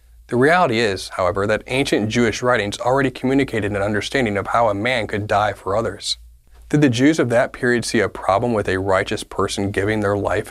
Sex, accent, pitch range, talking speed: male, American, 95-125 Hz, 205 wpm